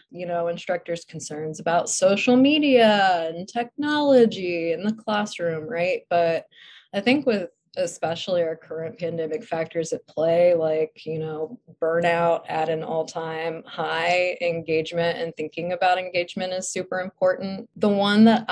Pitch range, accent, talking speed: 170-235 Hz, American, 140 wpm